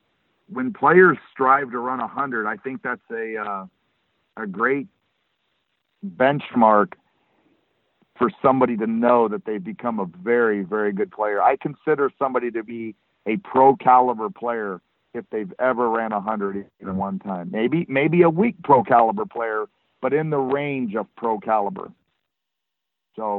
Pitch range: 115-150 Hz